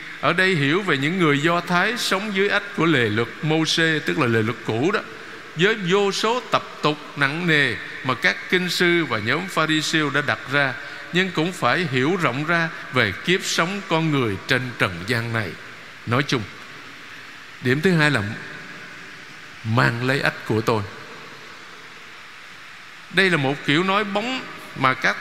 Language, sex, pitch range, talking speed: Vietnamese, male, 125-175 Hz, 170 wpm